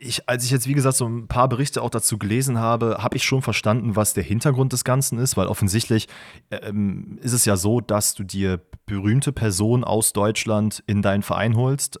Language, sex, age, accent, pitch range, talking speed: German, male, 30-49, German, 95-115 Hz, 210 wpm